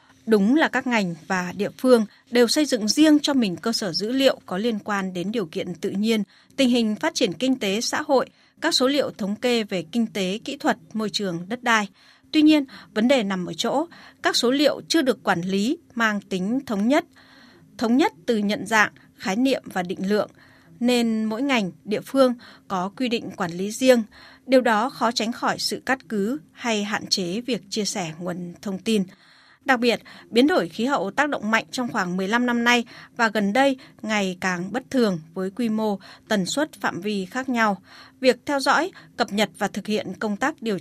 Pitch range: 195-255 Hz